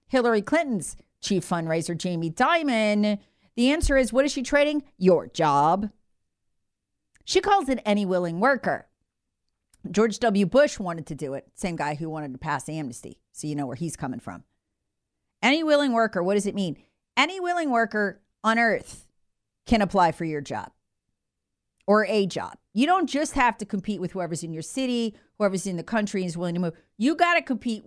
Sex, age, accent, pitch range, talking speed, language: female, 40-59, American, 170-265 Hz, 185 wpm, English